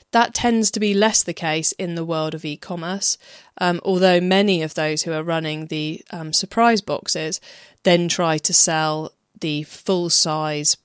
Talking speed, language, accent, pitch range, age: 165 wpm, English, British, 160-200 Hz, 20-39